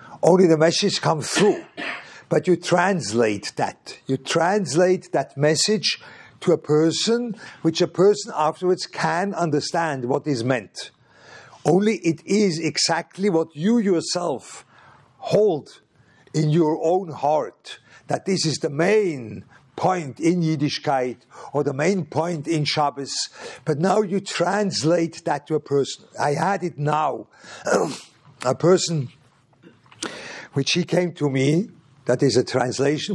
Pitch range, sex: 145-180 Hz, male